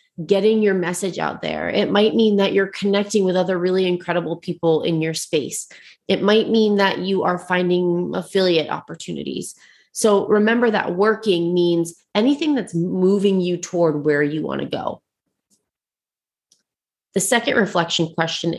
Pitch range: 170-210 Hz